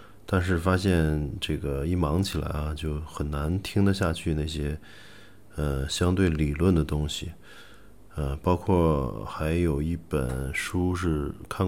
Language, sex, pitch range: Chinese, male, 75-95 Hz